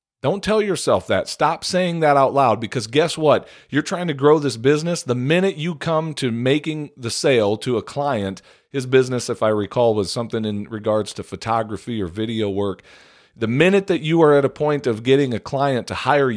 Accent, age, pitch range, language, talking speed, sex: American, 40-59, 115-150 Hz, English, 210 wpm, male